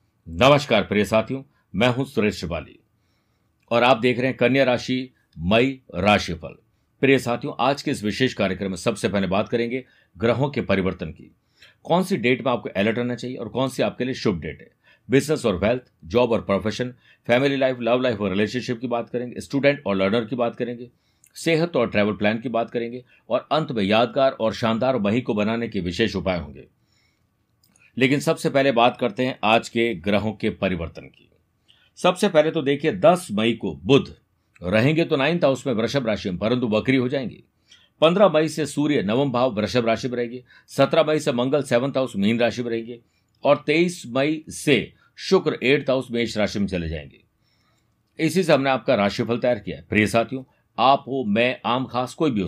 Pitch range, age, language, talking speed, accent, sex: 105-135 Hz, 50-69, Hindi, 195 wpm, native, male